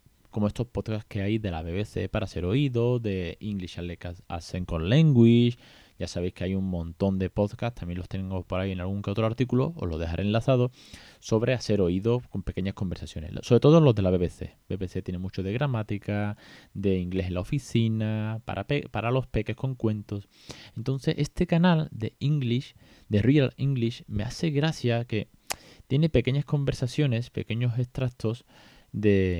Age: 20-39